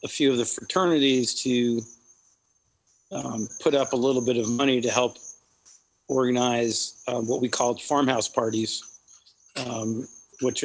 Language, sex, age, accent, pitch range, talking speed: English, male, 40-59, American, 115-125 Hz, 140 wpm